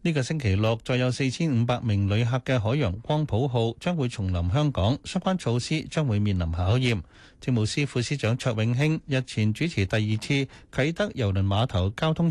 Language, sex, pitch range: Chinese, male, 105-145 Hz